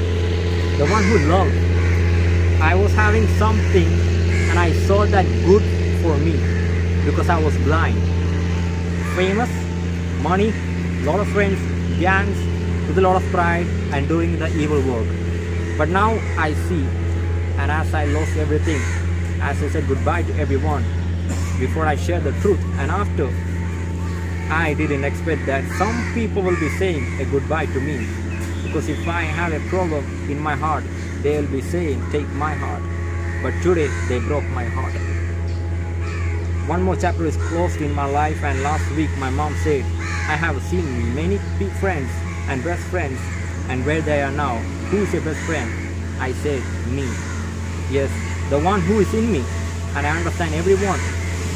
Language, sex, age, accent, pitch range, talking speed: English, male, 20-39, Indian, 85-90 Hz, 160 wpm